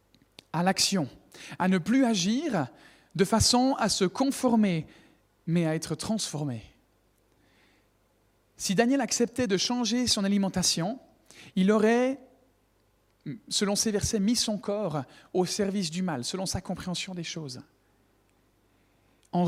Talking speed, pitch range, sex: 125 wpm, 130-205 Hz, male